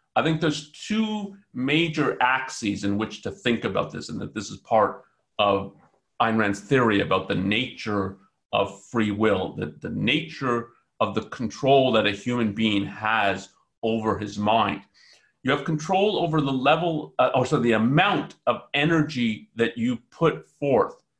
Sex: male